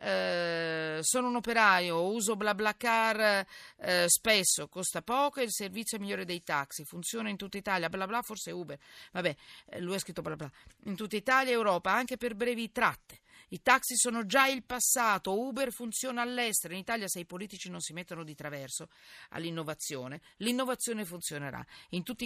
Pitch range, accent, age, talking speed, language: 175-240 Hz, native, 40-59, 180 wpm, Italian